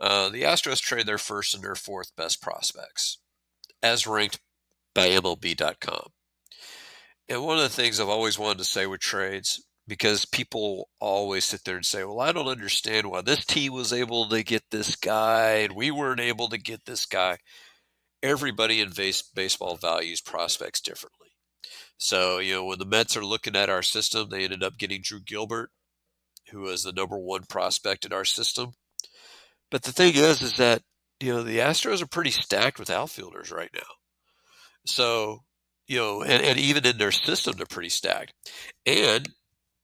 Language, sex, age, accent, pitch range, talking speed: English, male, 50-69, American, 95-120 Hz, 175 wpm